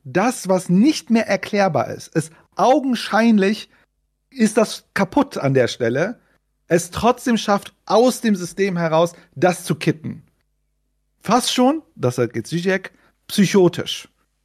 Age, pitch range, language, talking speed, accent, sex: 40-59, 140-185 Hz, German, 125 wpm, German, male